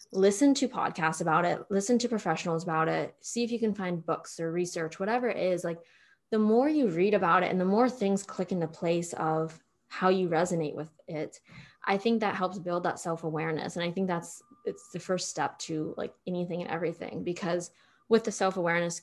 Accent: American